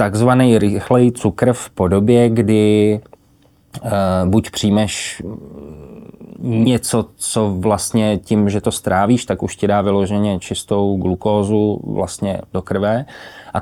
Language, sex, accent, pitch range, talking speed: Czech, male, native, 95-115 Hz, 115 wpm